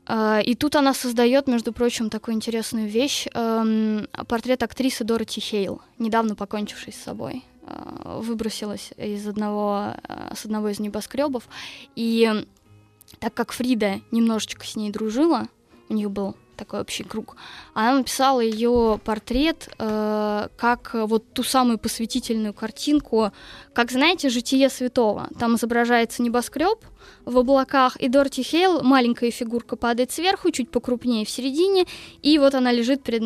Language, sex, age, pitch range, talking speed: Russian, female, 20-39, 225-270 Hz, 135 wpm